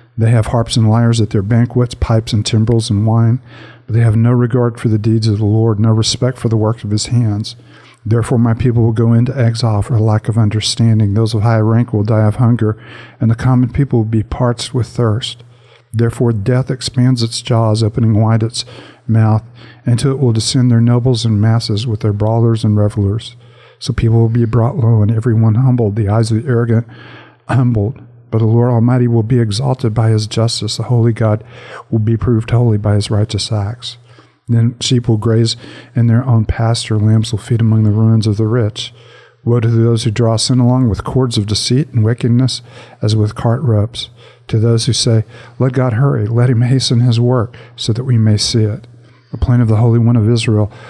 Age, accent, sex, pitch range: 50-69, American, male, 110-120 Hz